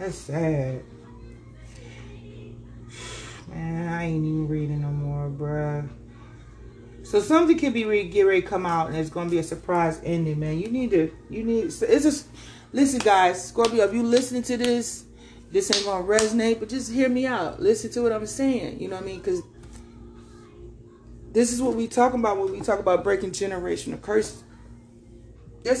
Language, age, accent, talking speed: English, 30-49, American, 180 wpm